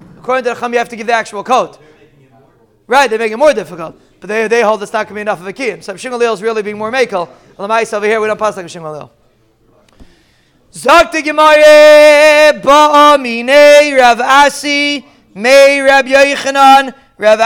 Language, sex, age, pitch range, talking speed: English, male, 30-49, 200-250 Hz, 190 wpm